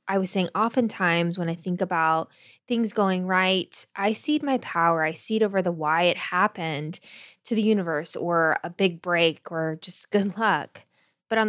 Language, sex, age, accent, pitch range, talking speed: English, female, 10-29, American, 170-215 Hz, 185 wpm